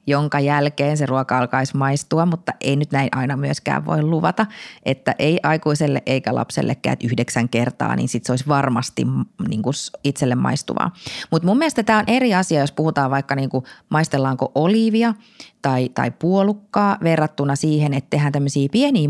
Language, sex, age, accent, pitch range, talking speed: Finnish, female, 20-39, native, 140-190 Hz, 155 wpm